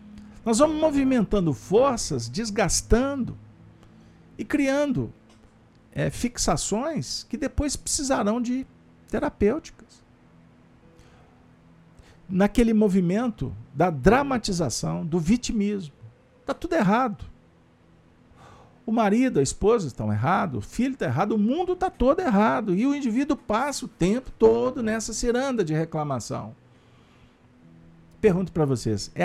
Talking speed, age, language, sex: 105 wpm, 50-69, Portuguese, male